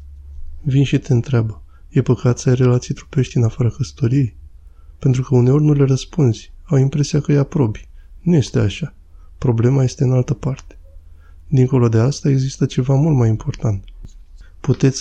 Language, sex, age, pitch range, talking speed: Romanian, male, 20-39, 110-135 Hz, 165 wpm